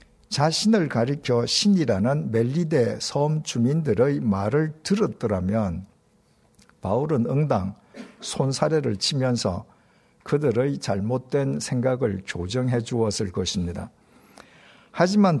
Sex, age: male, 60-79